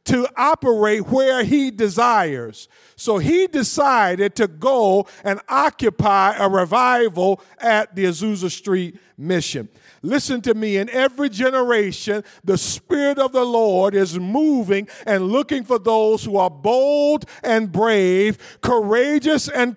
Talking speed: 130 wpm